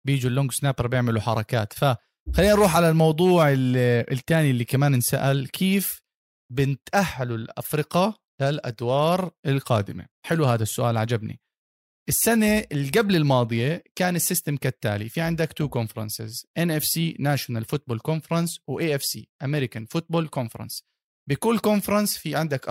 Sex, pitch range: male, 130-190 Hz